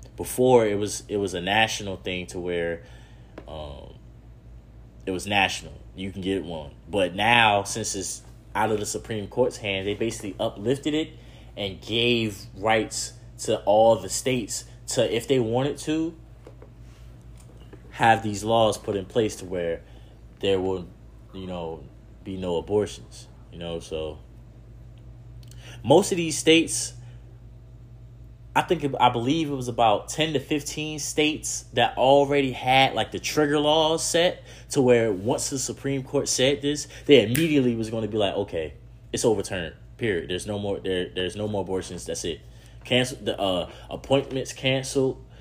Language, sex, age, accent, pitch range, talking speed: English, male, 20-39, American, 95-125 Hz, 155 wpm